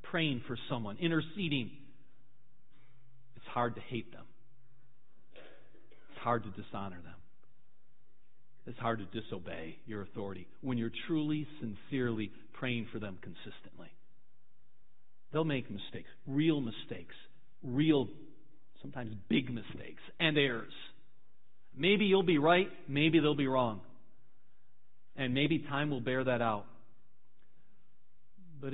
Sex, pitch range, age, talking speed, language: male, 120-150 Hz, 40-59, 115 wpm, English